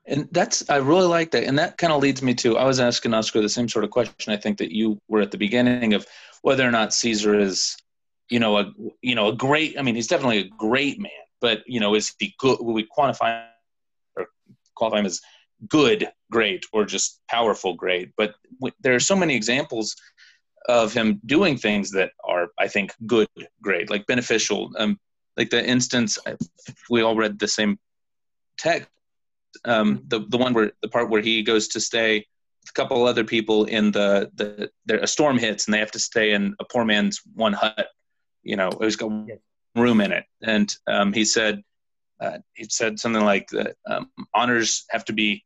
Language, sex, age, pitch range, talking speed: English, male, 30-49, 105-125 Hz, 205 wpm